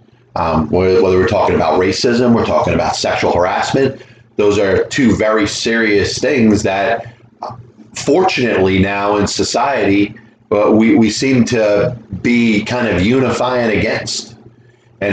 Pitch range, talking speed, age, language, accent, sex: 105-120 Hz, 130 wpm, 30-49, English, American, male